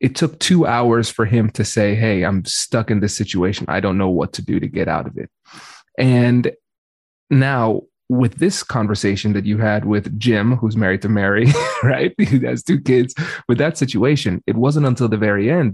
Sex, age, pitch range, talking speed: male, 30-49, 105-135 Hz, 200 wpm